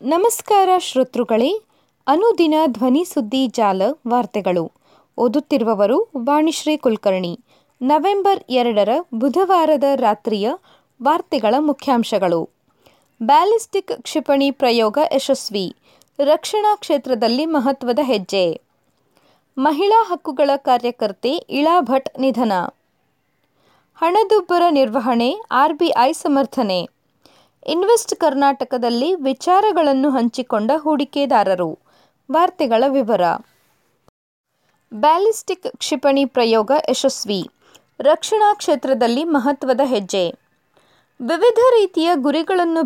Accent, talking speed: native, 70 wpm